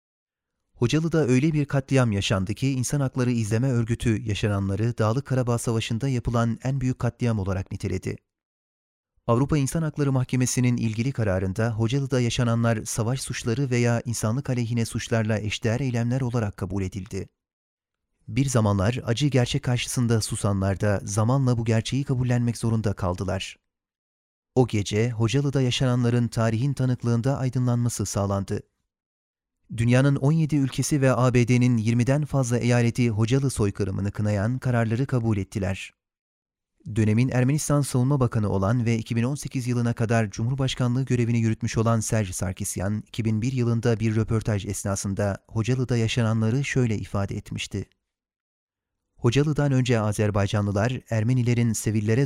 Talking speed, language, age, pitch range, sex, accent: 120 wpm, Turkish, 30-49, 105-130 Hz, male, native